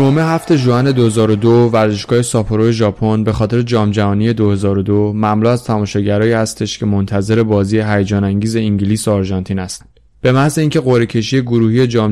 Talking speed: 160 wpm